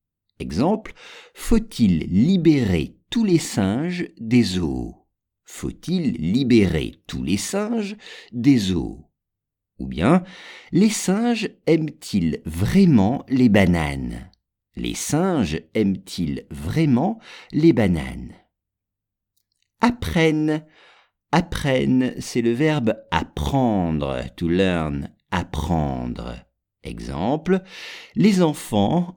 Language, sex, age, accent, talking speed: English, male, 50-69, French, 85 wpm